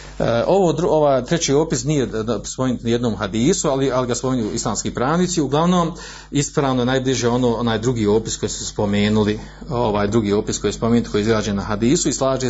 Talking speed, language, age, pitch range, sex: 195 wpm, Croatian, 40-59, 110-135 Hz, male